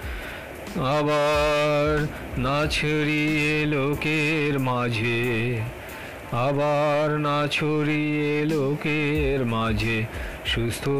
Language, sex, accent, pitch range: Bengali, male, native, 135-160 Hz